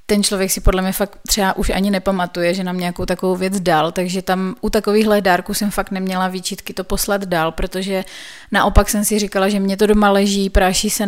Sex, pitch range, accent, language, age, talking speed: female, 190-210 Hz, native, Czech, 30-49, 215 wpm